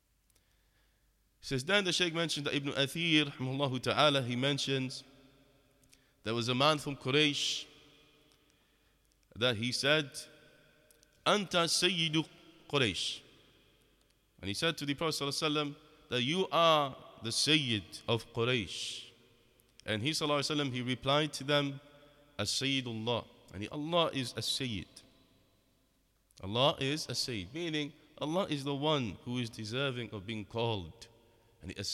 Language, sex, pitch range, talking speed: English, male, 115-150 Hz, 120 wpm